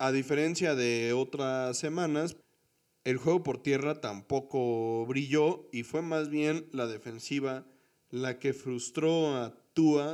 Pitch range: 120-140 Hz